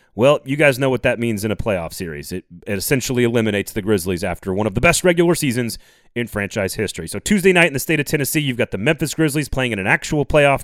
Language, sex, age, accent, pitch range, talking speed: English, male, 30-49, American, 110-160 Hz, 255 wpm